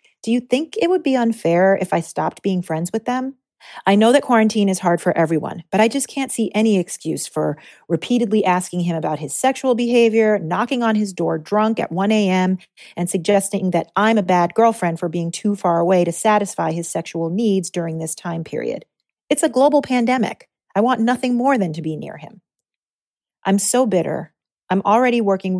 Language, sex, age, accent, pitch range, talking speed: English, female, 40-59, American, 175-225 Hz, 200 wpm